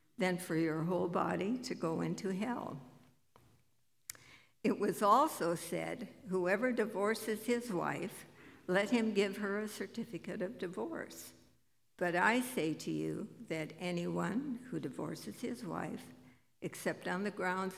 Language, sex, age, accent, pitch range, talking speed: English, female, 60-79, American, 170-205 Hz, 135 wpm